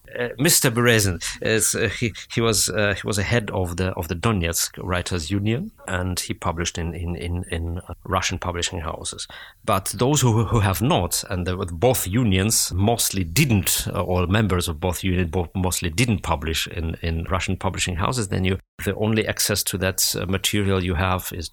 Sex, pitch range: male, 85-105 Hz